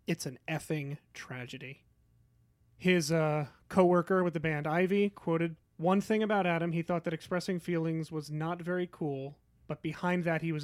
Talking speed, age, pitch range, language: 170 wpm, 30-49, 140-175 Hz, English